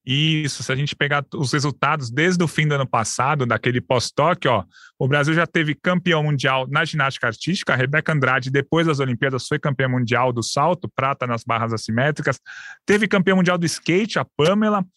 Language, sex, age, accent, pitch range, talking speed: Portuguese, male, 20-39, Brazilian, 130-170 Hz, 190 wpm